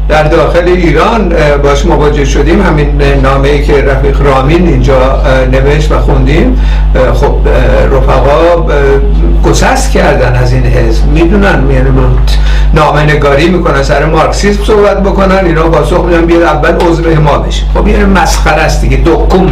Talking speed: 140 wpm